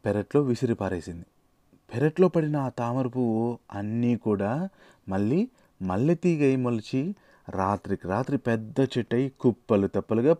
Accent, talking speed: native, 115 wpm